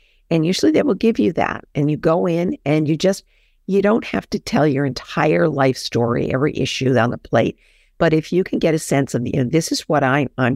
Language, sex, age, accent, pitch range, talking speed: English, female, 50-69, American, 140-175 Hz, 255 wpm